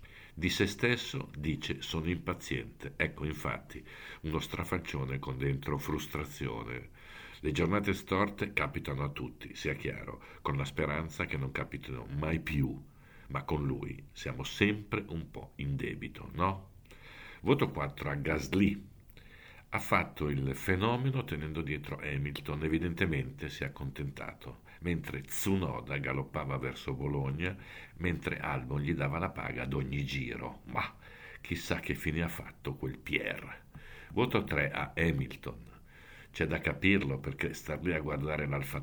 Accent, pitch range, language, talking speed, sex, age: native, 70-90 Hz, Italian, 140 wpm, male, 50-69